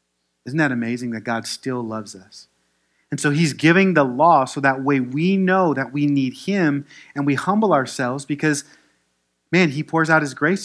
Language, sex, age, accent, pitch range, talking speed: English, male, 30-49, American, 105-145 Hz, 190 wpm